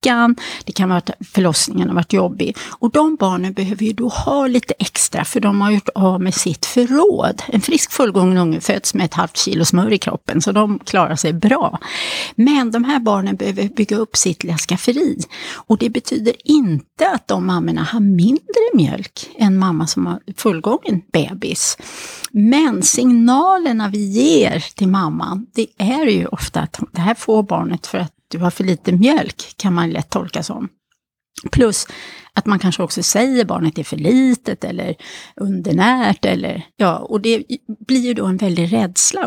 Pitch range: 180-245 Hz